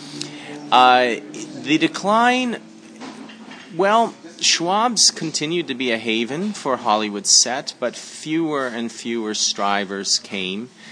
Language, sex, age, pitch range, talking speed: English, male, 40-59, 95-130 Hz, 105 wpm